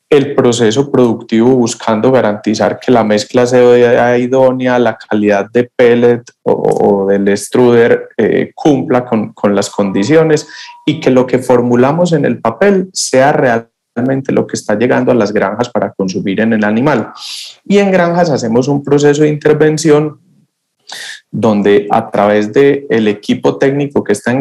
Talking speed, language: 160 wpm, Spanish